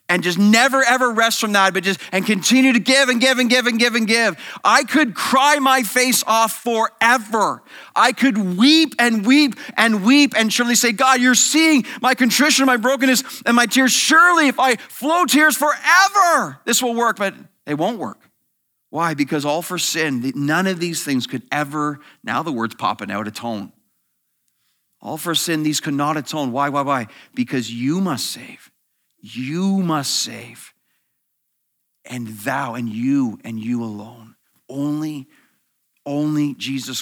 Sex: male